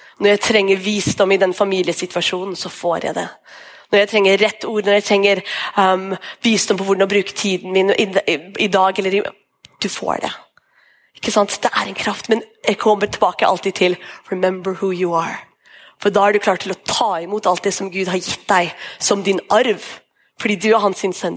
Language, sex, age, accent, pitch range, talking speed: English, female, 30-49, Swedish, 195-245 Hz, 210 wpm